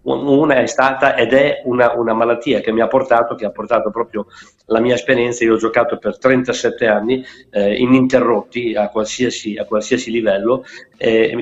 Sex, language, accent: male, Italian, native